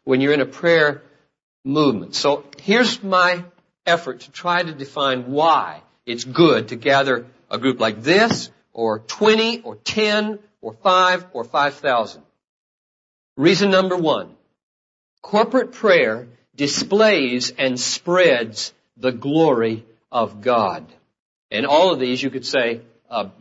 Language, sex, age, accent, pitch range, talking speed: English, male, 60-79, American, 135-215 Hz, 130 wpm